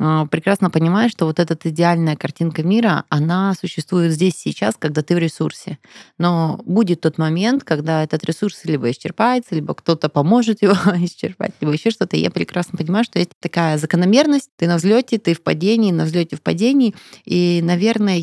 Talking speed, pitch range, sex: 175 wpm, 155-195 Hz, female